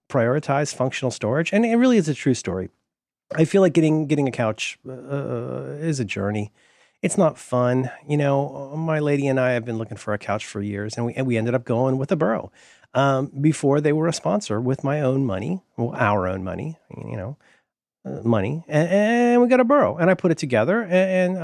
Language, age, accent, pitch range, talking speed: English, 40-59, American, 120-185 Hz, 215 wpm